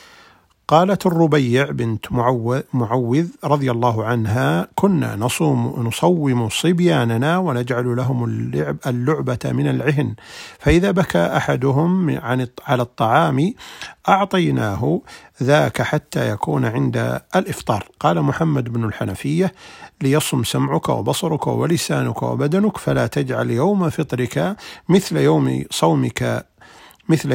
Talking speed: 105 wpm